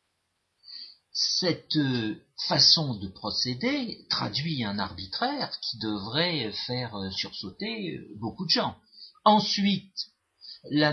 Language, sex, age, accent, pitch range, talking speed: French, male, 50-69, French, 110-150 Hz, 90 wpm